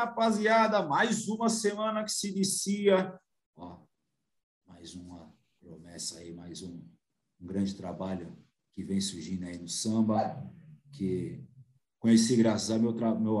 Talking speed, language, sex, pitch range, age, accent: 125 wpm, Portuguese, male, 95-125 Hz, 50-69, Brazilian